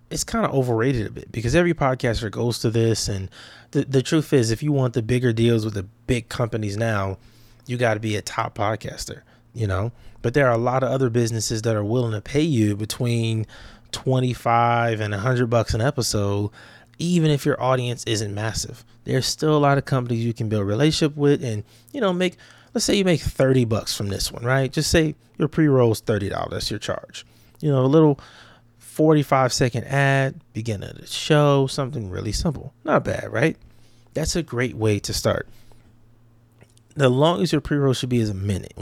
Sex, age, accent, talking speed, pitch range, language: male, 20-39, American, 200 wpm, 110-135 Hz, English